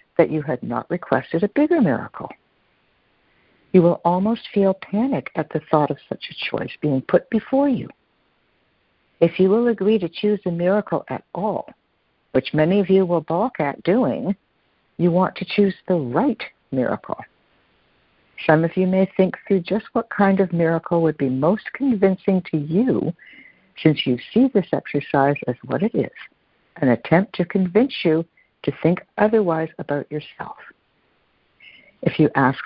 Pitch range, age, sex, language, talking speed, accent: 150-200 Hz, 60-79, female, English, 160 wpm, American